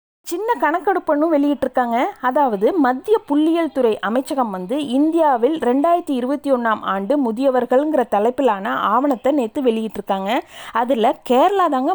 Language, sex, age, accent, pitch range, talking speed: Tamil, female, 30-49, native, 225-305 Hz, 100 wpm